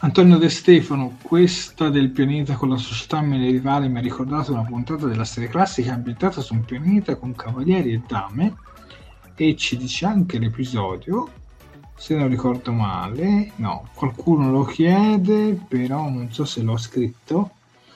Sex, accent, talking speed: male, native, 155 wpm